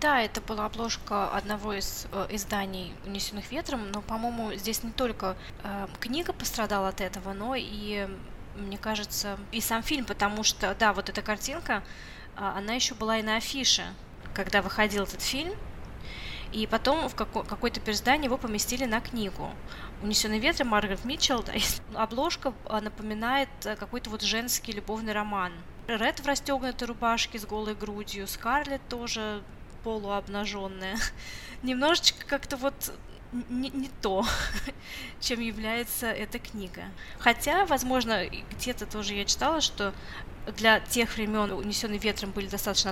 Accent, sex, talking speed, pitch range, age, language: native, female, 145 wpm, 200-235 Hz, 20-39, Russian